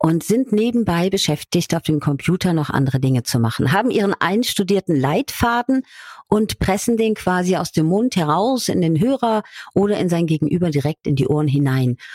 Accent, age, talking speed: German, 50-69, 180 wpm